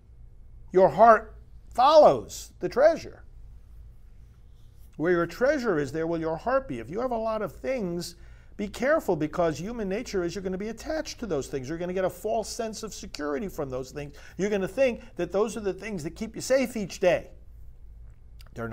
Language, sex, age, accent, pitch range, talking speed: English, male, 50-69, American, 125-195 Hz, 200 wpm